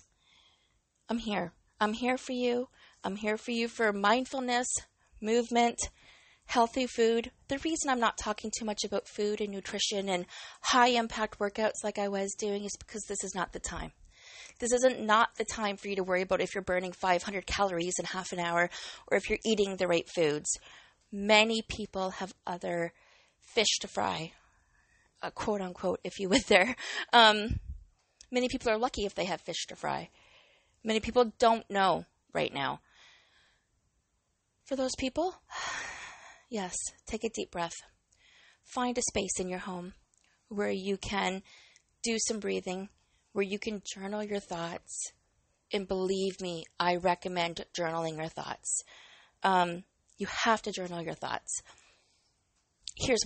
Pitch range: 180-225 Hz